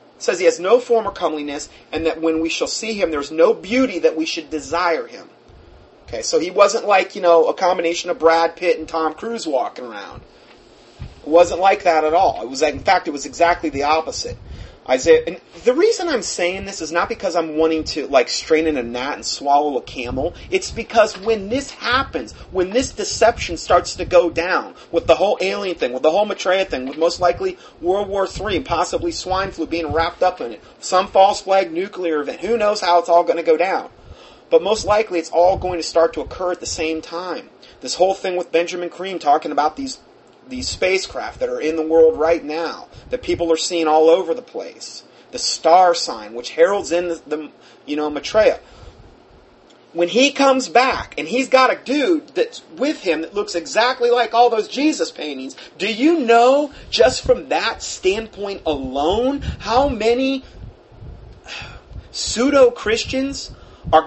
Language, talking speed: English, 200 wpm